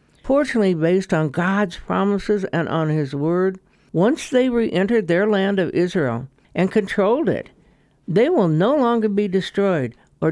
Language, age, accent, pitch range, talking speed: English, 60-79, American, 160-220 Hz, 150 wpm